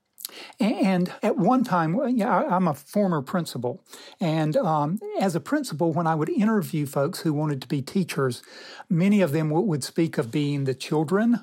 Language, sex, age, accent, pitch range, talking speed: English, male, 60-79, American, 155-195 Hz, 170 wpm